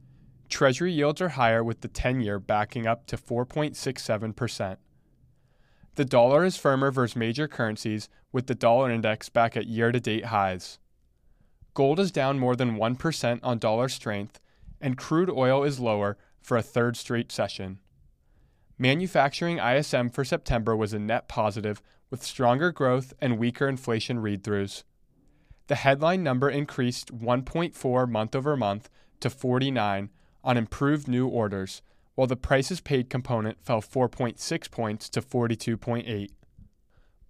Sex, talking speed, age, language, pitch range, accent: male, 130 wpm, 20-39, English, 110-135 Hz, American